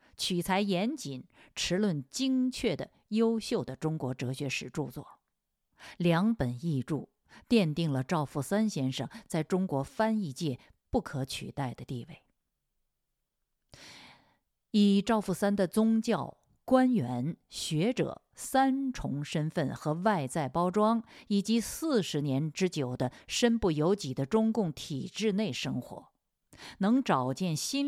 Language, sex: Chinese, female